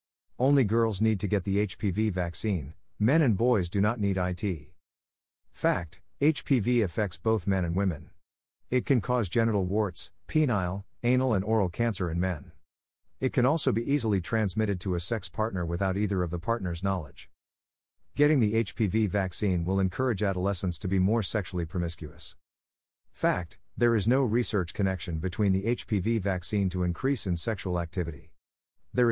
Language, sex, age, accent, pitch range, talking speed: English, male, 50-69, American, 90-110 Hz, 160 wpm